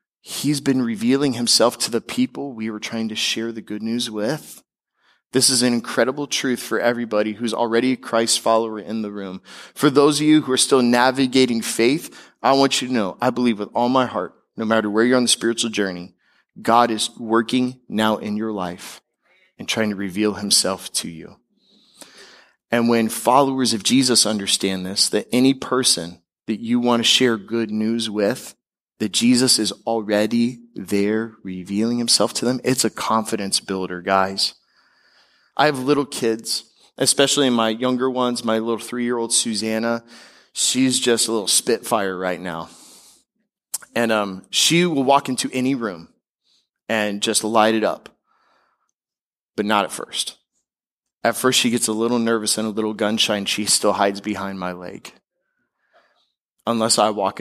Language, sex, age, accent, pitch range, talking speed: English, male, 20-39, American, 105-125 Hz, 170 wpm